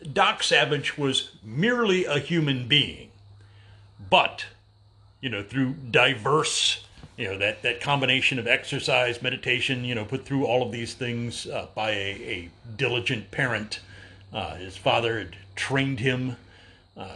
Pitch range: 105-140 Hz